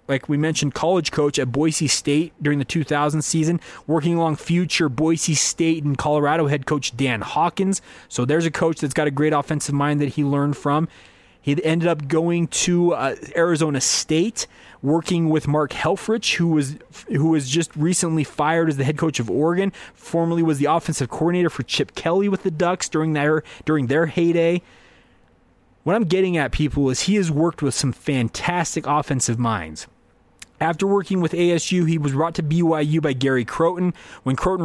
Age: 20-39